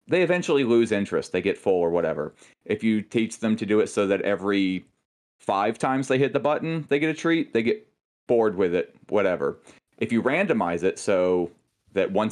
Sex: male